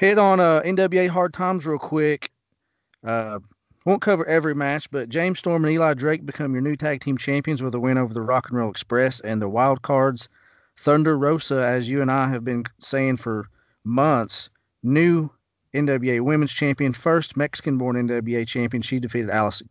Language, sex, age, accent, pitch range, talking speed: English, male, 40-59, American, 115-145 Hz, 185 wpm